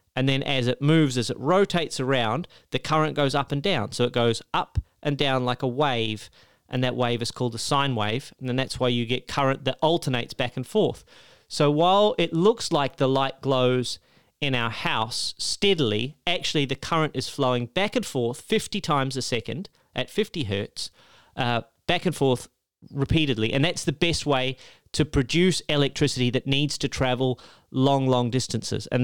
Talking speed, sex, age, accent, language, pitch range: 190 wpm, male, 30-49, Australian, English, 120-145 Hz